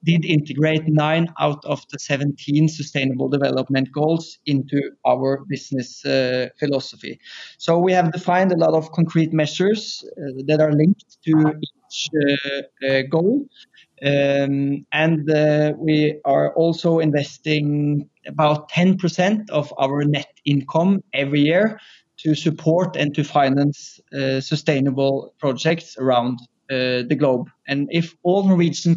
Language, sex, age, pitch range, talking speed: English, male, 20-39, 140-160 Hz, 135 wpm